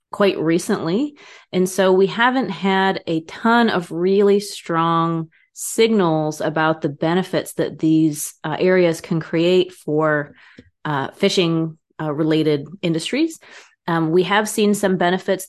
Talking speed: 130 wpm